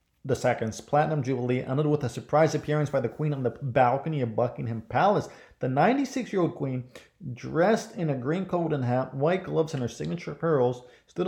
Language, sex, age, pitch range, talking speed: English, male, 30-49, 125-155 Hz, 185 wpm